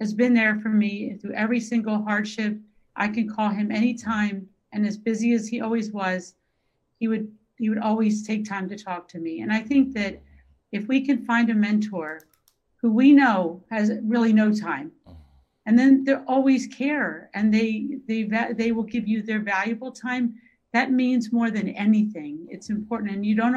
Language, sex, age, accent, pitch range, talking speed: English, female, 50-69, American, 200-230 Hz, 190 wpm